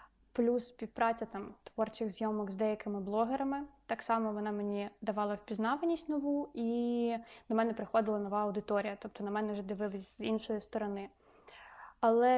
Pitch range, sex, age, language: 210-235 Hz, female, 20-39, Ukrainian